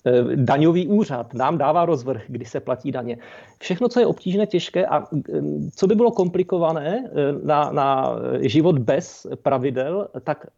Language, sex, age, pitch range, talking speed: Czech, male, 40-59, 130-180 Hz, 140 wpm